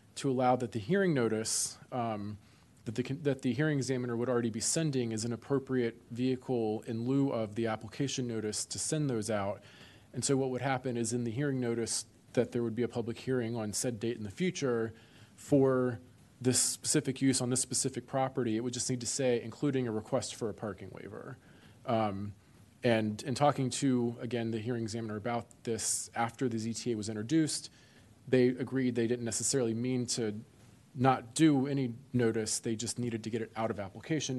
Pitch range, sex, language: 115-130 Hz, male, English